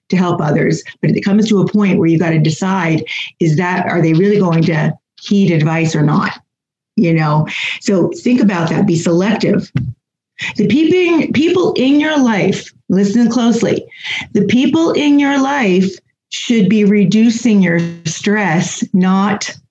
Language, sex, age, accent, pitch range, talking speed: English, female, 40-59, American, 175-230 Hz, 160 wpm